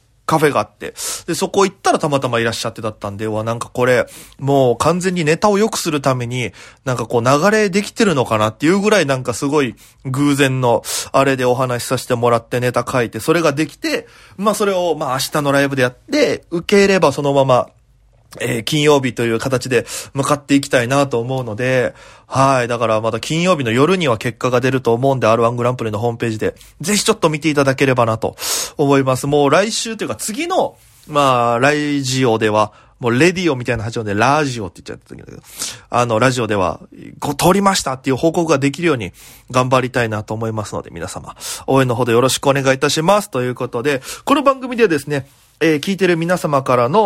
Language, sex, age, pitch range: Japanese, male, 20-39, 120-170 Hz